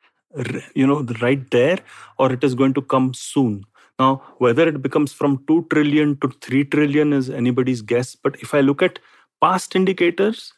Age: 40-59